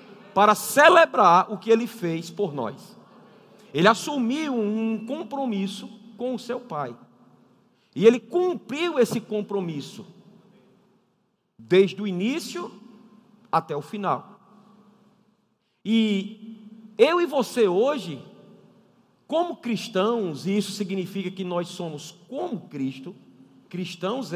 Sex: male